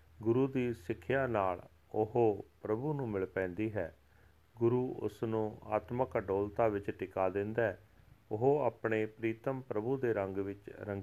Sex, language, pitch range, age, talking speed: male, Punjabi, 100-115 Hz, 40-59, 135 wpm